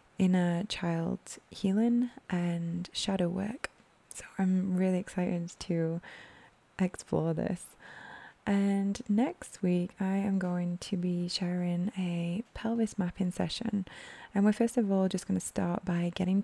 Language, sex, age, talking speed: English, female, 20-39, 135 wpm